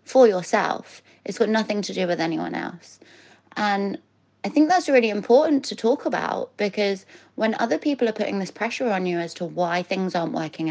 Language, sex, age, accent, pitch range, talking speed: English, female, 20-39, British, 170-210 Hz, 195 wpm